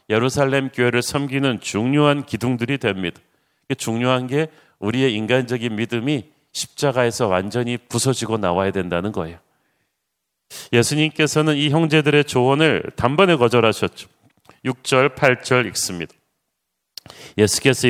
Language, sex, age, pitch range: Korean, male, 40-59, 115-140 Hz